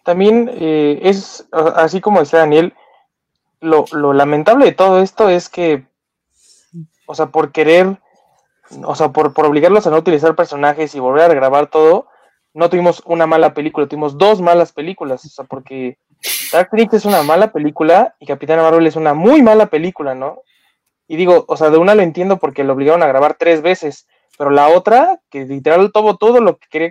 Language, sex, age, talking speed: Spanish, male, 20-39, 190 wpm